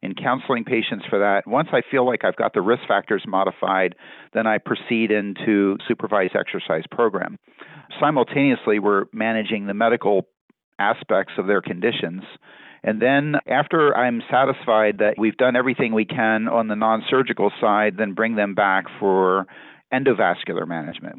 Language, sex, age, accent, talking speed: English, male, 50-69, American, 150 wpm